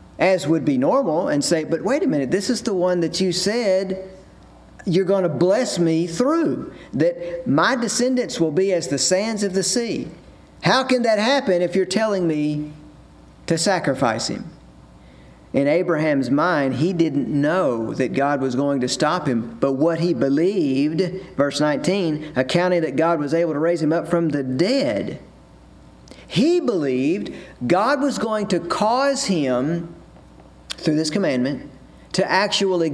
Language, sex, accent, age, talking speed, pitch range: English, male, American, 50-69, 160 wpm, 140-195 Hz